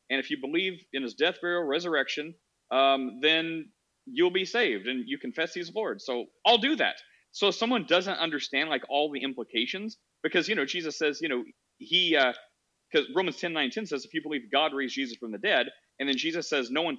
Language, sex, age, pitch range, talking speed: English, male, 30-49, 130-175 Hz, 220 wpm